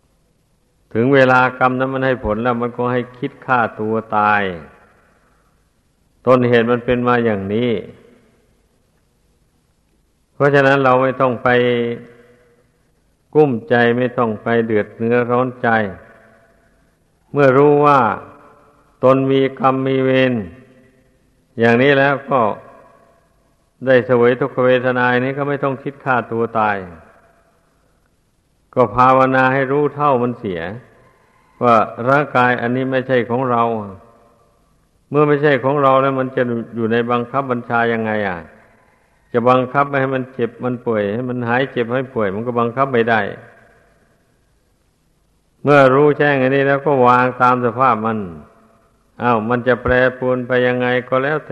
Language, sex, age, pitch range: Thai, male, 60-79, 115-130 Hz